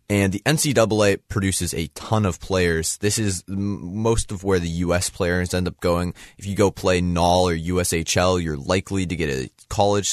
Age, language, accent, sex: 20-39, English, American, male